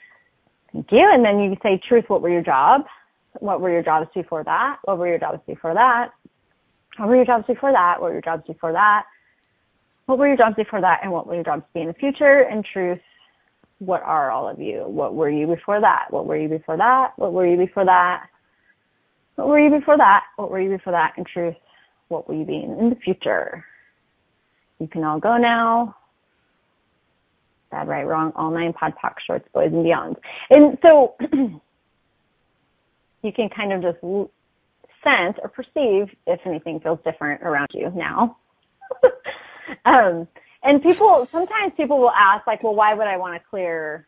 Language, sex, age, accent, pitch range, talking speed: English, female, 20-39, American, 175-255 Hz, 190 wpm